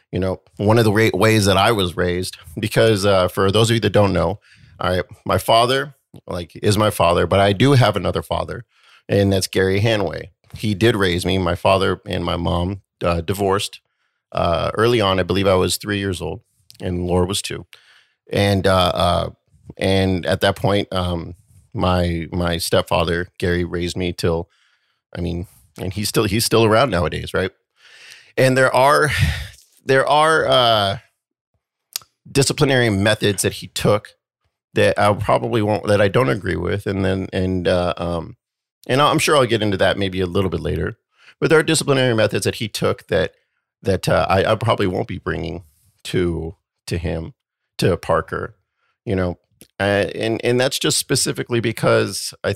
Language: English